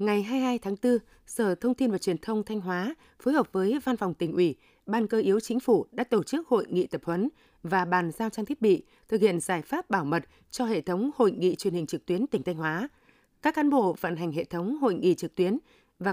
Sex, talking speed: female, 255 wpm